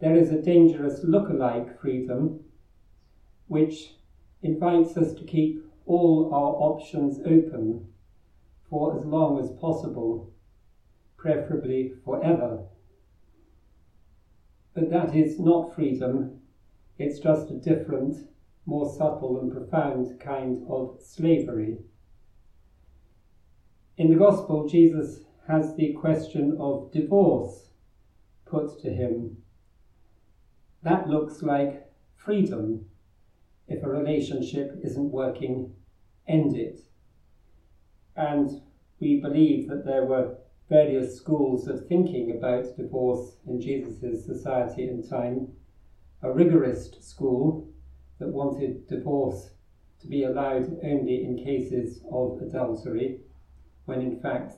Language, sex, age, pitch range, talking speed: English, male, 50-69, 105-155 Hz, 105 wpm